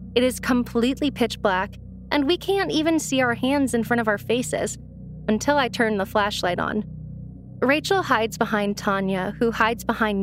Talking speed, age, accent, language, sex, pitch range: 175 wpm, 20-39, American, English, female, 205-260 Hz